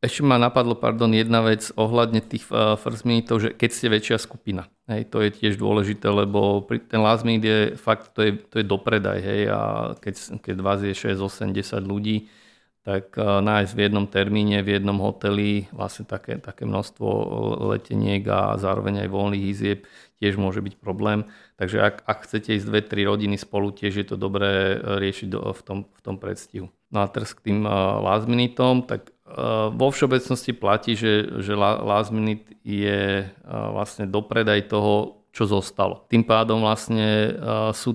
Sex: male